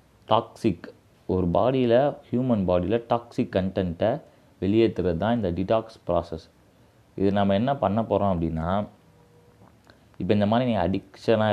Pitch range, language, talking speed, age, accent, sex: 90-115 Hz, Tamil, 120 wpm, 30-49, native, male